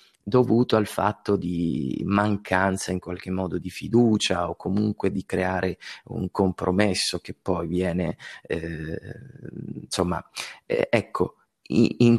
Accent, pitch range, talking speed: native, 95-110 Hz, 120 wpm